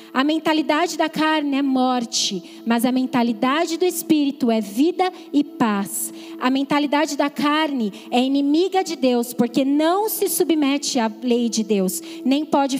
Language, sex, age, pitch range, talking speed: Portuguese, female, 20-39, 240-330 Hz, 155 wpm